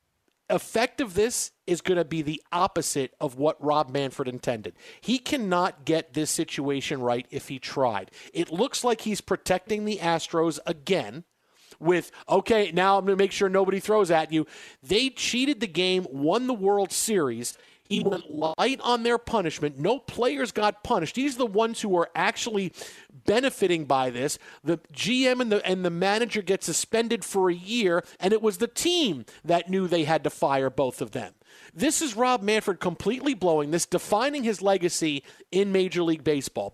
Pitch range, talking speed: 160-215 Hz, 180 wpm